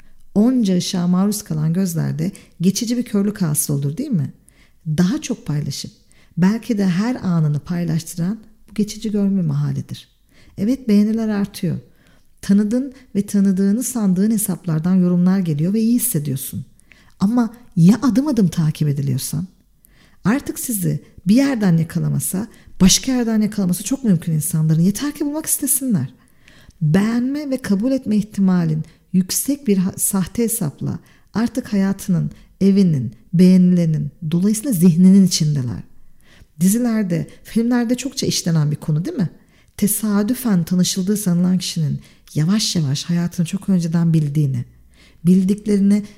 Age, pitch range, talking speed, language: 50-69, 170-220 Hz, 120 wpm, Turkish